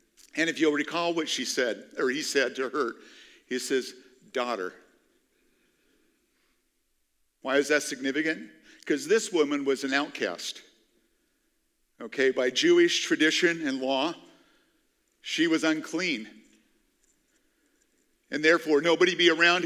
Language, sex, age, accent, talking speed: English, male, 50-69, American, 120 wpm